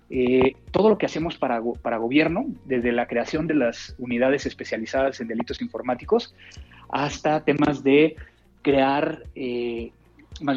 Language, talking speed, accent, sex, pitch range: Spanish, 135 wpm, Mexican, male, 125-165 Hz